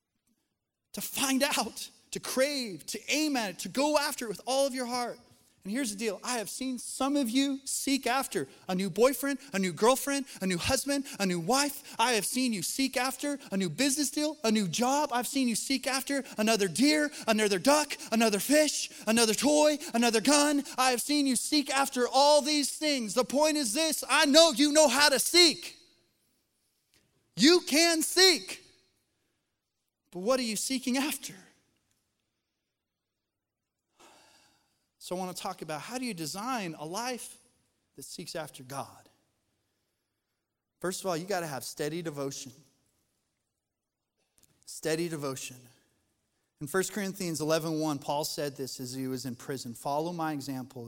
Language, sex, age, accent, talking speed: English, male, 20-39, American, 165 wpm